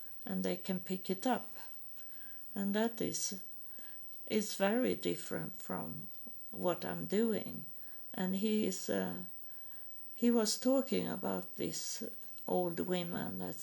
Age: 50-69